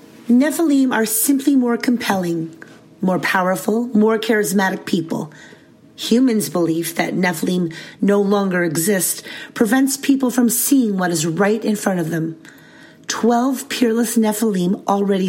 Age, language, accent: 40-59, English, American